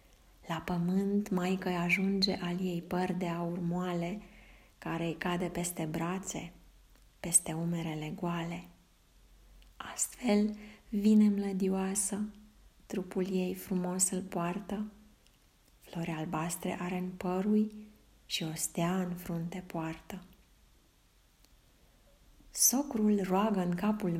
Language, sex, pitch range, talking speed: Romanian, female, 170-210 Hz, 105 wpm